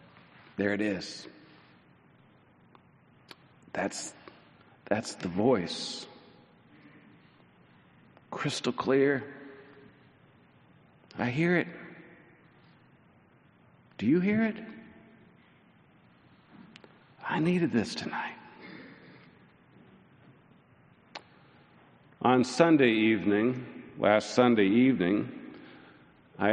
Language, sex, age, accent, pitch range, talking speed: English, male, 50-69, American, 110-145 Hz, 60 wpm